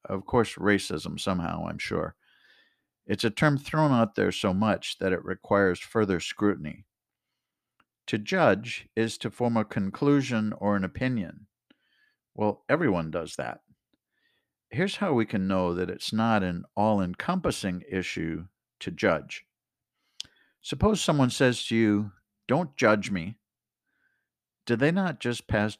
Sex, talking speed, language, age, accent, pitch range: male, 135 wpm, English, 50-69, American, 95-130 Hz